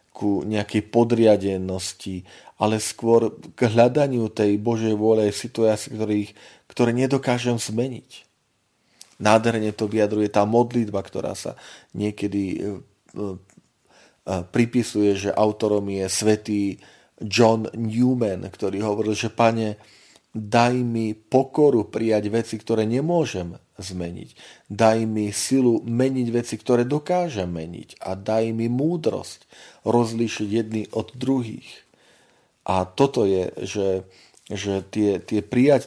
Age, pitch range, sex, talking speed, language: 30-49, 100-120 Hz, male, 115 wpm, Slovak